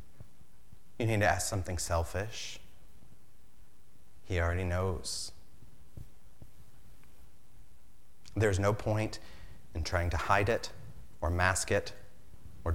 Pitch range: 90-115 Hz